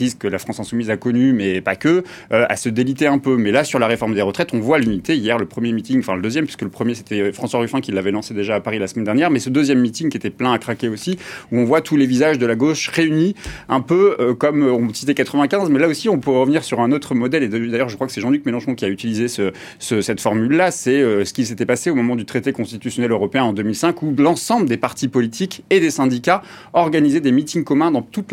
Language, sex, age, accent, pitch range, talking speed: French, male, 30-49, French, 110-135 Hz, 270 wpm